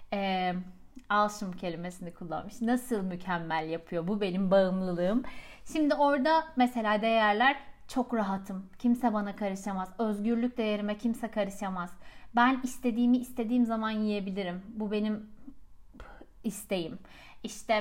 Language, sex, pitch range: Turkish, female, 195-240 Hz